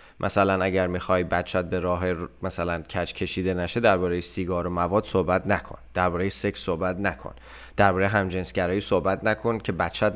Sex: male